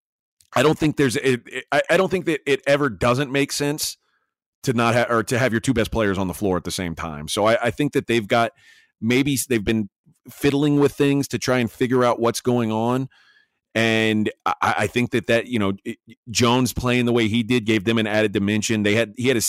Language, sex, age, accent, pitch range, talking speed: English, male, 30-49, American, 105-130 Hz, 225 wpm